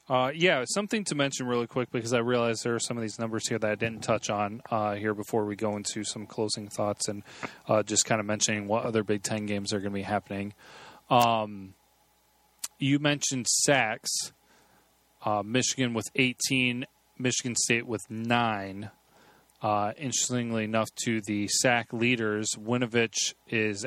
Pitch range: 110-130 Hz